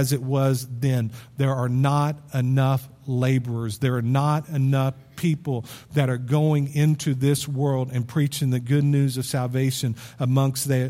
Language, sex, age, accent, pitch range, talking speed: English, male, 50-69, American, 125-155 Hz, 155 wpm